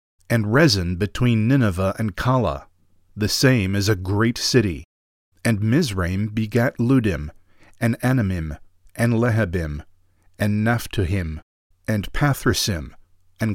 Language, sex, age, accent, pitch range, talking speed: English, male, 50-69, American, 90-120 Hz, 110 wpm